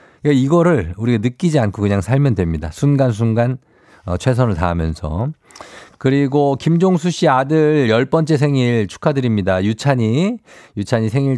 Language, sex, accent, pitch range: Korean, male, native, 100-145 Hz